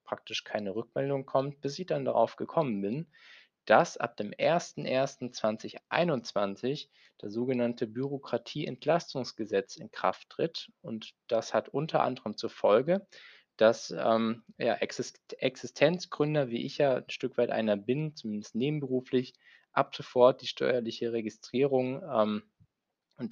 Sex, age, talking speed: male, 20-39, 125 wpm